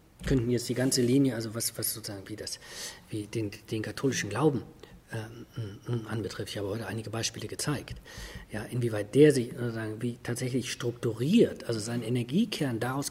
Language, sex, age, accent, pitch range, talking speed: German, male, 40-59, German, 115-140 Hz, 165 wpm